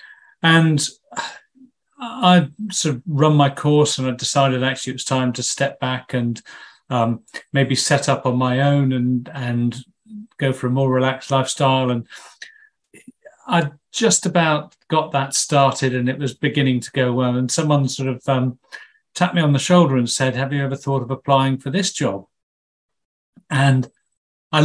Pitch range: 130-170 Hz